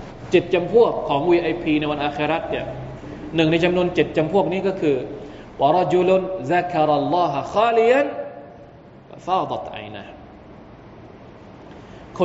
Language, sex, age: Thai, male, 20-39